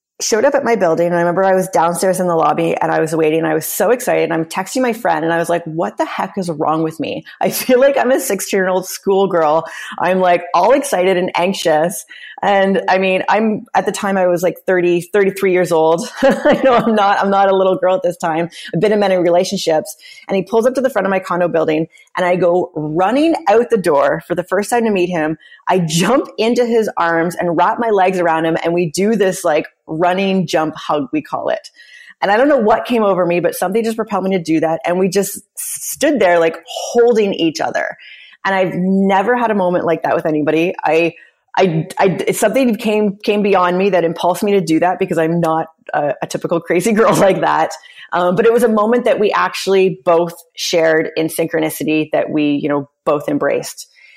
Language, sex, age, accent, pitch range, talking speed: English, female, 30-49, American, 165-205 Hz, 235 wpm